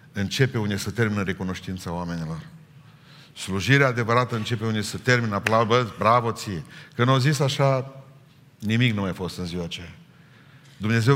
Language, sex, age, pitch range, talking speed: Romanian, male, 50-69, 115-145 Hz, 140 wpm